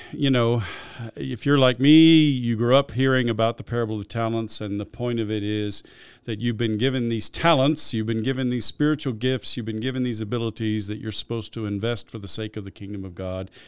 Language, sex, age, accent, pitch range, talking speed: English, male, 50-69, American, 100-130 Hz, 230 wpm